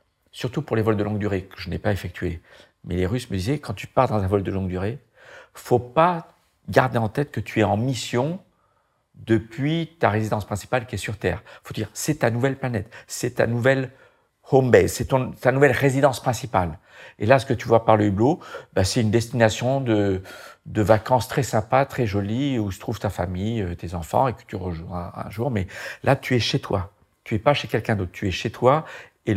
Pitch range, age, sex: 95-125 Hz, 50-69, male